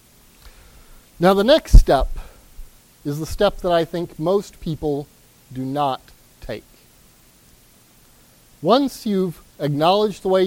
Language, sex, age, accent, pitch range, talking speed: English, male, 40-59, American, 130-185 Hz, 115 wpm